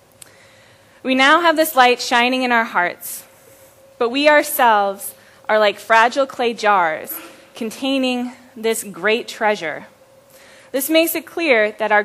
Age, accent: 10-29, American